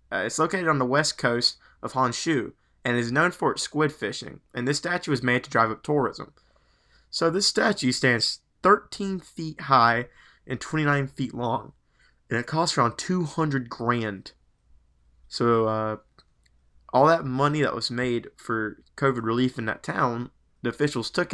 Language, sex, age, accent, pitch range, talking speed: English, male, 20-39, American, 110-135 Hz, 165 wpm